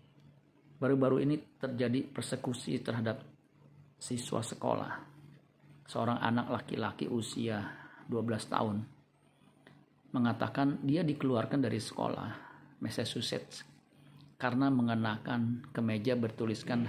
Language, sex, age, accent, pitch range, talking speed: Indonesian, male, 40-59, native, 115-135 Hz, 80 wpm